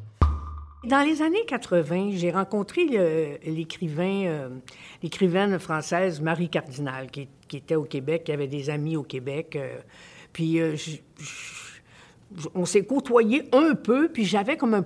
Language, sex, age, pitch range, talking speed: French, female, 50-69, 150-210 Hz, 155 wpm